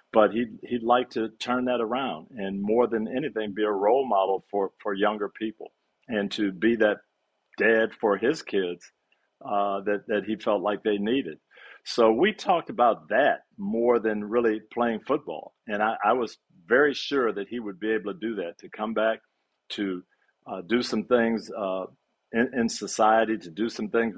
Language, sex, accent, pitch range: English, male, American, 100-120 Hz